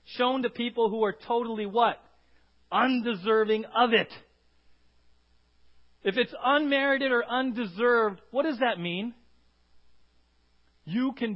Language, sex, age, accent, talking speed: English, male, 40-59, American, 110 wpm